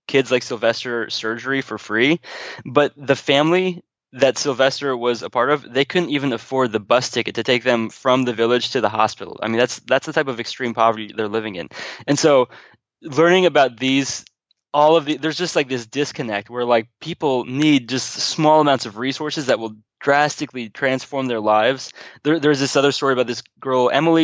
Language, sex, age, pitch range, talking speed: English, male, 20-39, 115-140 Hz, 200 wpm